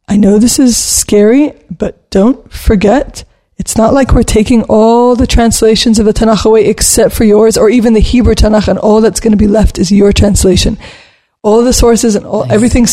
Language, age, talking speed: English, 20-39, 205 wpm